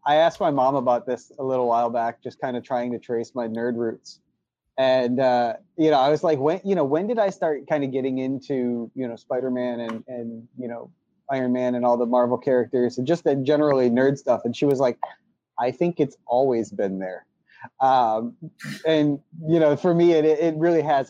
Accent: American